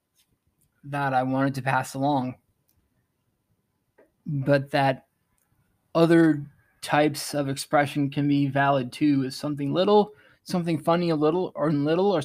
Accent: American